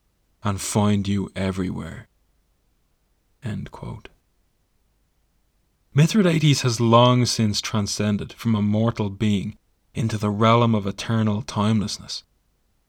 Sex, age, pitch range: male, 30-49, 100-120 Hz